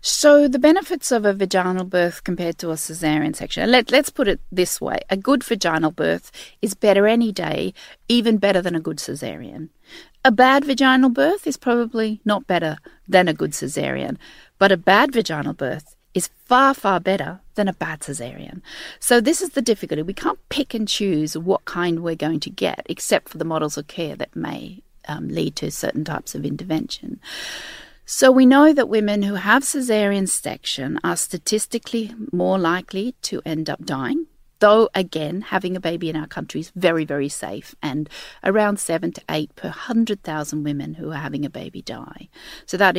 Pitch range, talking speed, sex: 160-225 Hz, 185 wpm, female